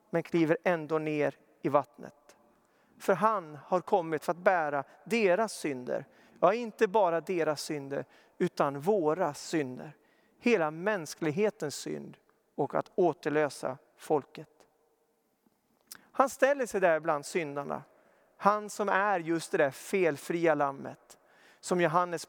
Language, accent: Swedish, native